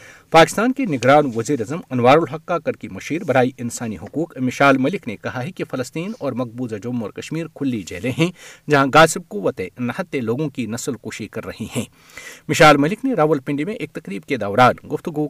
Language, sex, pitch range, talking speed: Urdu, male, 120-155 Hz, 190 wpm